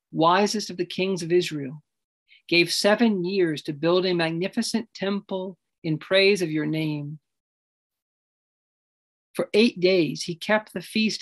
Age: 40-59